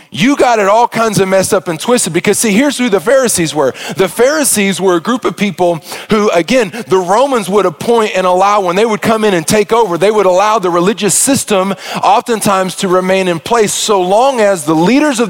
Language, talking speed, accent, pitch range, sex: English, 225 wpm, American, 180-220 Hz, male